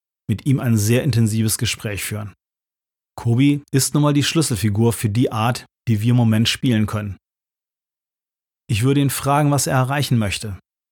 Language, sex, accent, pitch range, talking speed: German, male, German, 110-135 Hz, 165 wpm